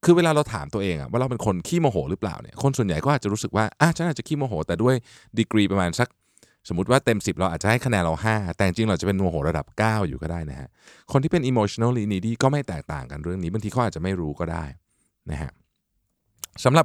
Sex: male